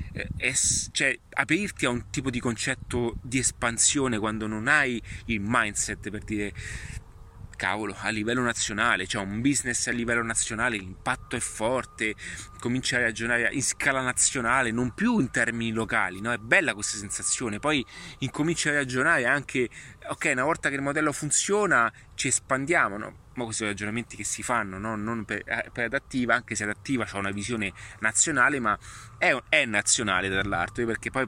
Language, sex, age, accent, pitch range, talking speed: Italian, male, 30-49, native, 105-130 Hz, 165 wpm